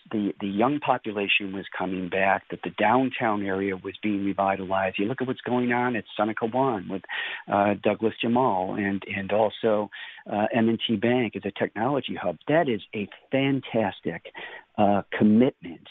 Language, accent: English, American